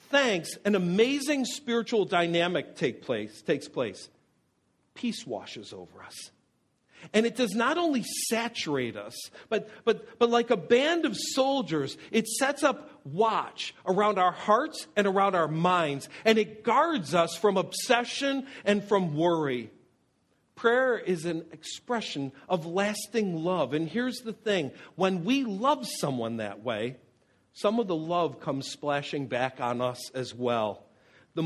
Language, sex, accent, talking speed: English, male, American, 145 wpm